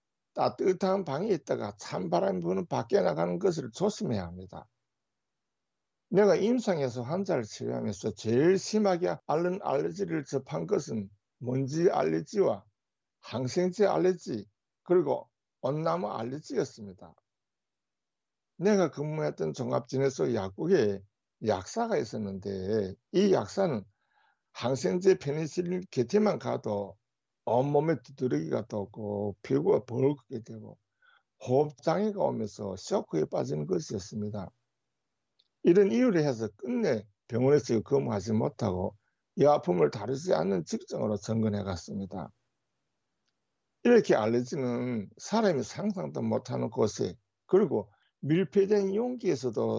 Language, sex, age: Korean, male, 60-79